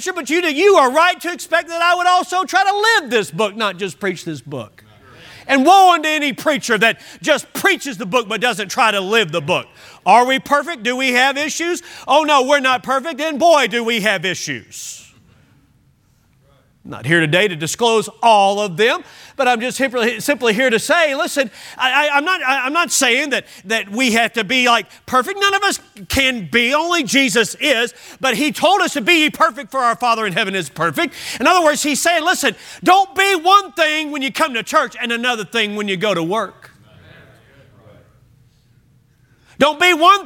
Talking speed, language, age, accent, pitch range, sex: 195 wpm, English, 40-59, American, 220-310 Hz, male